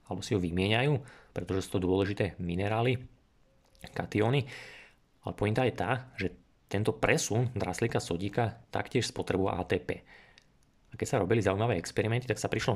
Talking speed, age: 145 wpm, 20-39